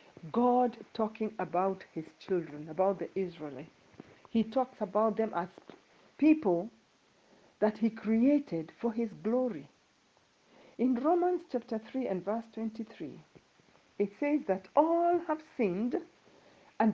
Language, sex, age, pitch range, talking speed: English, female, 50-69, 190-250 Hz, 120 wpm